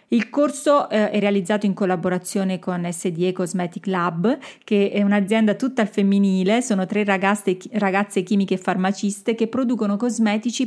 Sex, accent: female, native